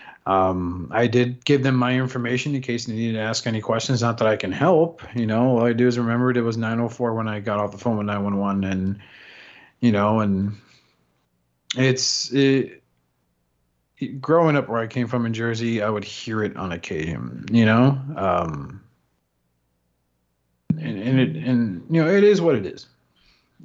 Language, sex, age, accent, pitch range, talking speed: English, male, 40-59, American, 100-130 Hz, 200 wpm